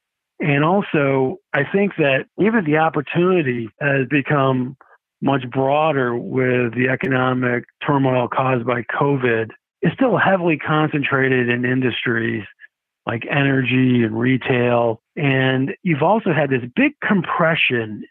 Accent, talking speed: American, 120 wpm